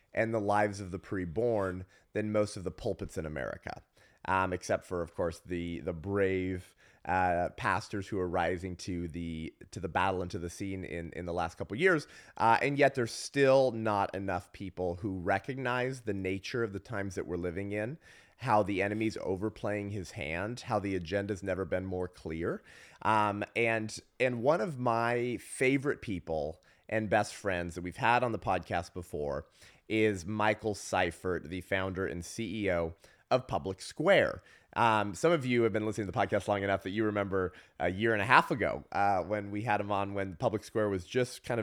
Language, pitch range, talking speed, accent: English, 95-115 Hz, 195 wpm, American